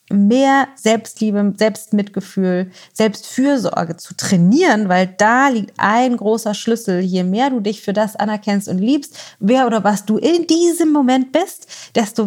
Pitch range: 195-240 Hz